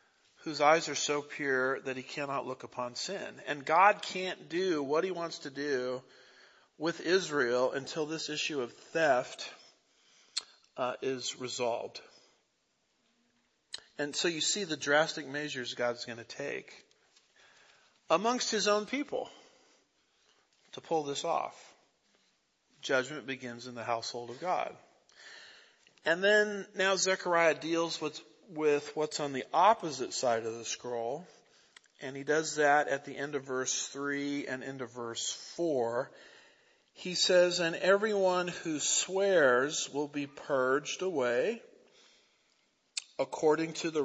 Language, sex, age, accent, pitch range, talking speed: English, male, 50-69, American, 135-180 Hz, 135 wpm